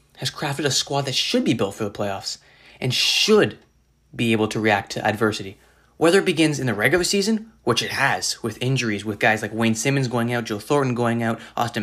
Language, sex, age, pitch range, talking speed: English, male, 20-39, 110-135 Hz, 220 wpm